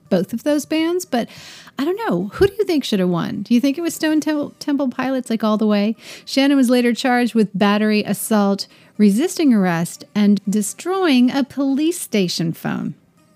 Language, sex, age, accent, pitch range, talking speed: English, female, 40-59, American, 185-255 Hz, 190 wpm